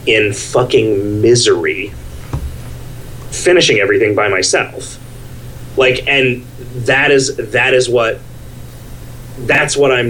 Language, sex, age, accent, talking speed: English, male, 30-49, American, 100 wpm